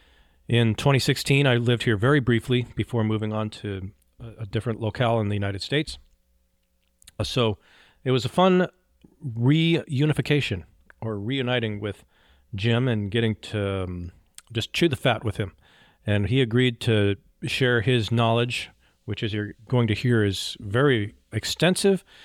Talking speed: 145 wpm